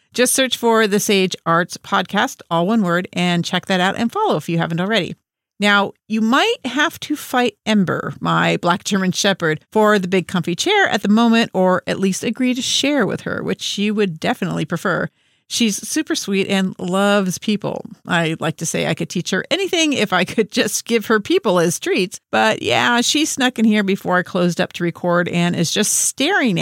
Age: 50-69